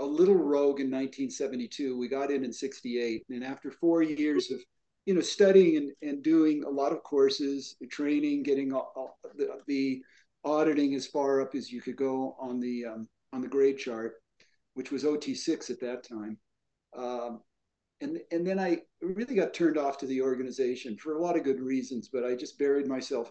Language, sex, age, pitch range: English, male, 50-69, 125-155 Hz